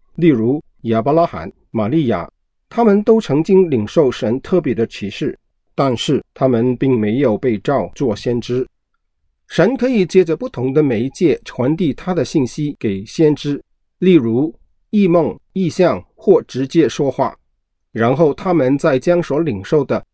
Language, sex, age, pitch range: Chinese, male, 50-69, 120-180 Hz